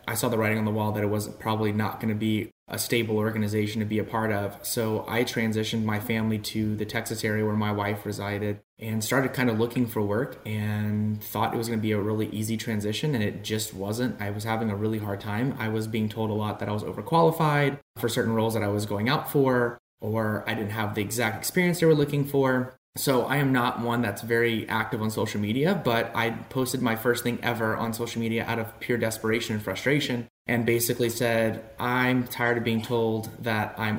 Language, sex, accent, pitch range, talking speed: English, male, American, 105-120 Hz, 235 wpm